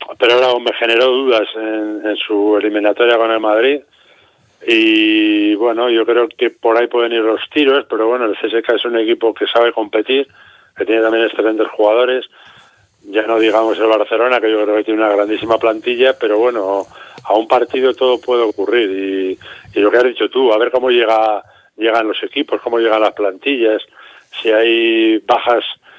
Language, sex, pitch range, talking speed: Spanish, male, 110-125 Hz, 185 wpm